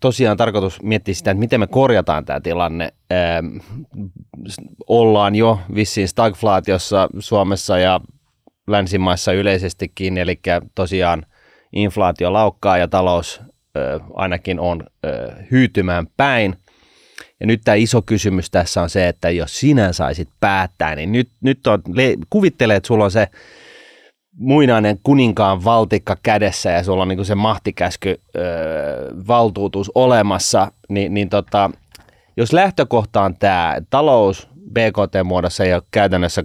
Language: Finnish